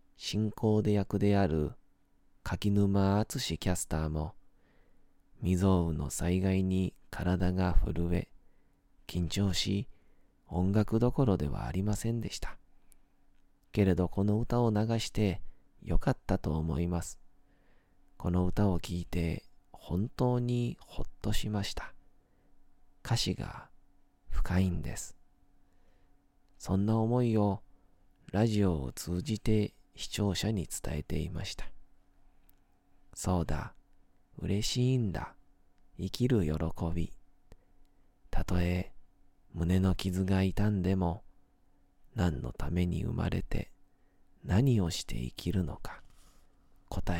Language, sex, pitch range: Japanese, male, 80-100 Hz